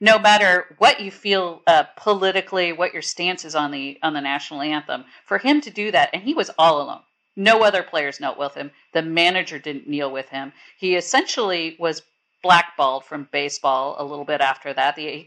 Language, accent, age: English, American, 50-69